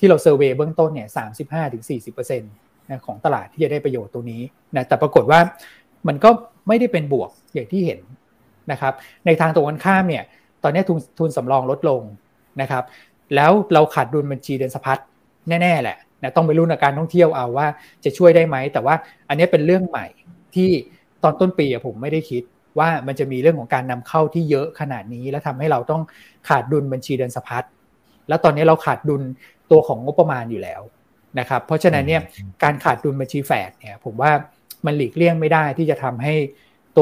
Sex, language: male, Thai